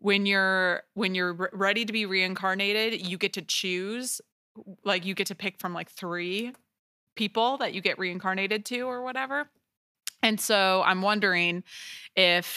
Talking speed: 160 wpm